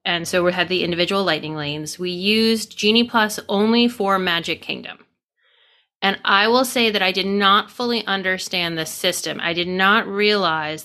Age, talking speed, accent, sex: 30-49, 175 wpm, American, female